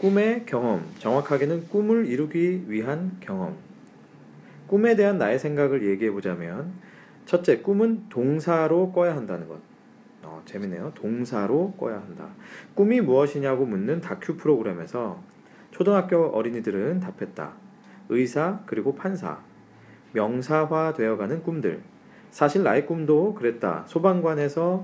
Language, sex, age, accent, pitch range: Korean, male, 40-59, native, 135-190 Hz